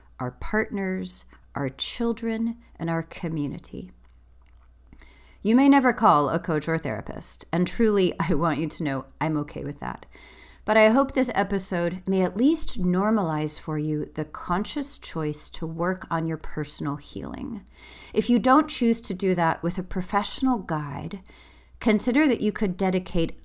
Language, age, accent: English, 30-49, American